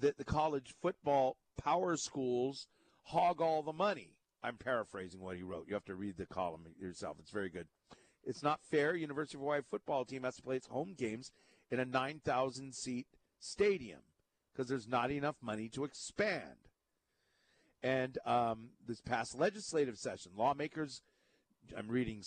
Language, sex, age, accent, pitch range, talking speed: English, male, 50-69, American, 125-170 Hz, 160 wpm